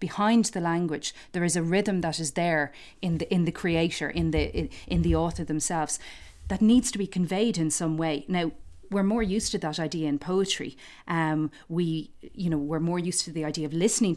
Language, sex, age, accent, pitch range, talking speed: English, female, 40-59, Irish, 155-185 Hz, 210 wpm